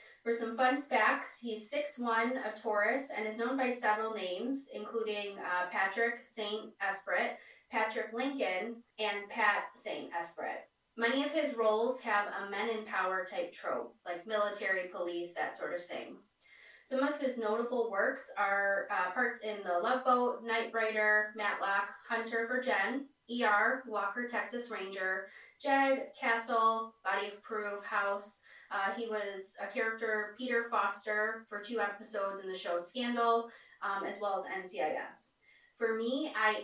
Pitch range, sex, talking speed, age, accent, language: 195-235 Hz, female, 150 wpm, 20-39, American, English